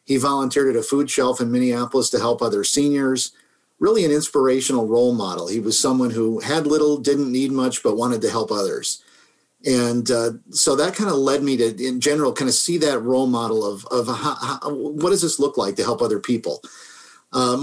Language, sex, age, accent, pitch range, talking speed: English, male, 50-69, American, 120-145 Hz, 210 wpm